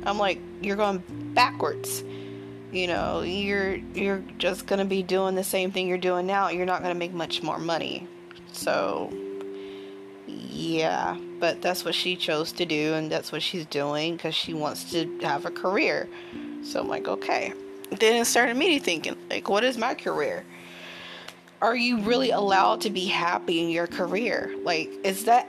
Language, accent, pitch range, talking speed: English, American, 155-230 Hz, 175 wpm